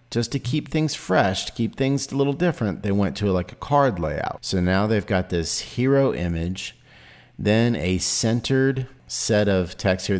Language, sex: English, male